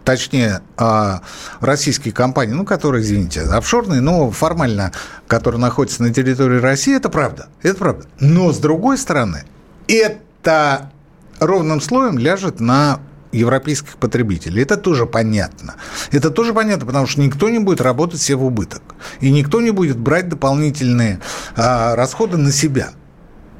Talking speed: 135 wpm